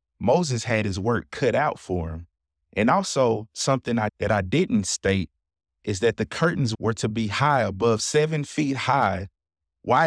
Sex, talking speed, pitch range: male, 165 wpm, 95-130 Hz